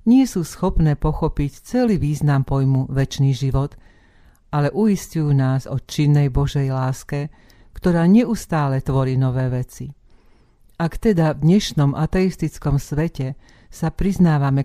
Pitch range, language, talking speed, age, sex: 135-160 Hz, Slovak, 120 wpm, 50-69, female